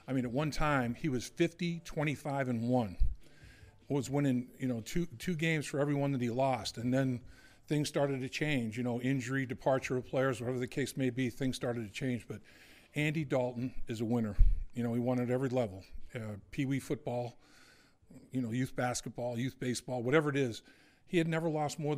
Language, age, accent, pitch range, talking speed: English, 50-69, American, 120-140 Hz, 200 wpm